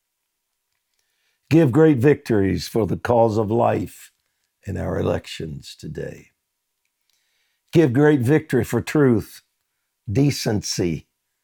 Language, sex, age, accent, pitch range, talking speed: English, male, 60-79, American, 100-145 Hz, 95 wpm